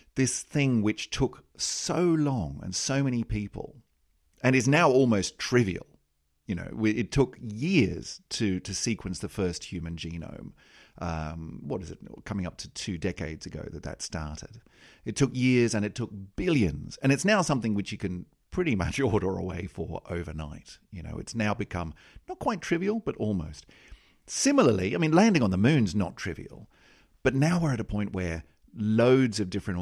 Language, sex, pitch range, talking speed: English, male, 85-120 Hz, 180 wpm